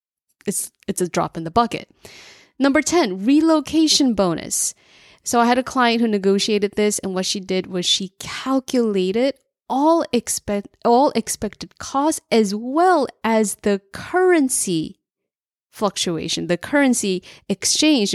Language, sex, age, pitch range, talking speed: English, female, 20-39, 185-265 Hz, 130 wpm